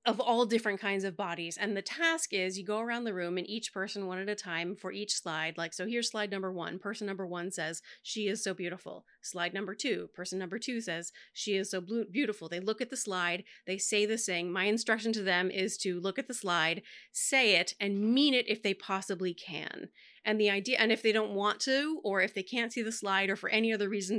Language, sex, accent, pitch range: English, female, American, 185-220 Hz